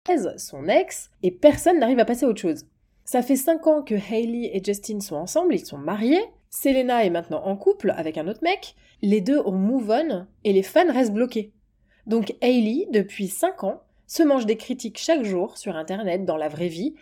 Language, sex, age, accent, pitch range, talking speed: French, female, 20-39, French, 190-260 Hz, 205 wpm